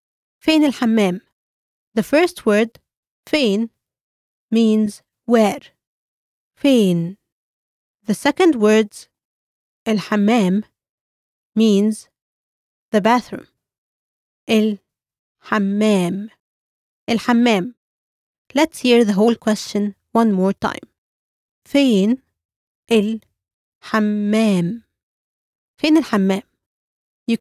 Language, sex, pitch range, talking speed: English, female, 210-250 Hz, 45 wpm